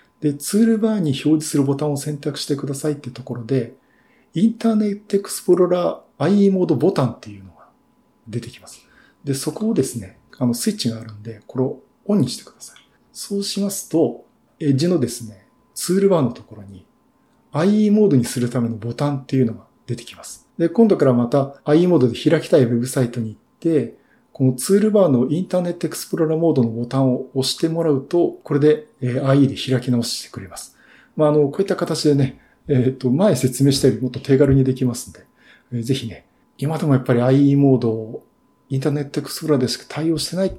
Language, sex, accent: Japanese, male, native